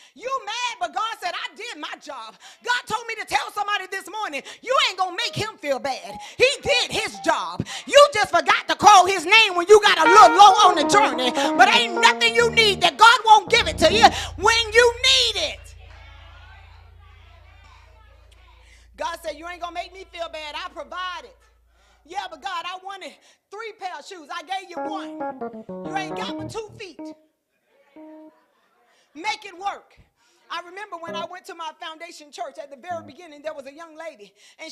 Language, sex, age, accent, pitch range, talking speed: English, female, 30-49, American, 305-395 Hz, 200 wpm